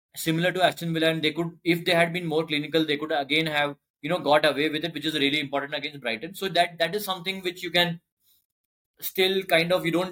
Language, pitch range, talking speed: English, 155-180 Hz, 250 wpm